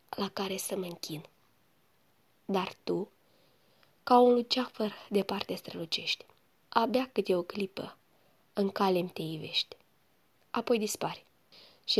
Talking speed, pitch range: 115 wpm, 180-225 Hz